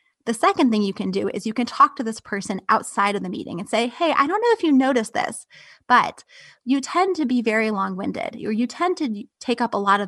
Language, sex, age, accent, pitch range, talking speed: English, female, 20-39, American, 205-245 Hz, 255 wpm